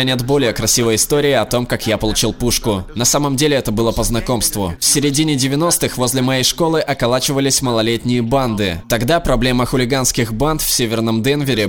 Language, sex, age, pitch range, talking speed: Russian, male, 20-39, 110-140 Hz, 170 wpm